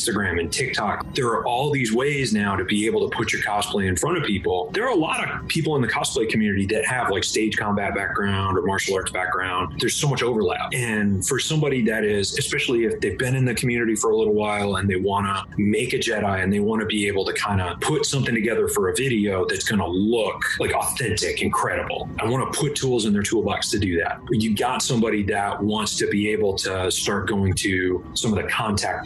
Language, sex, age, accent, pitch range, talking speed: English, male, 30-49, American, 100-125 Hz, 240 wpm